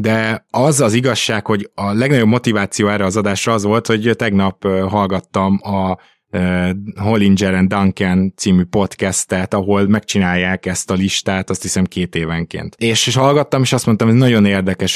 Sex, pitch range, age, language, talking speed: male, 95-115 Hz, 20-39, Hungarian, 165 wpm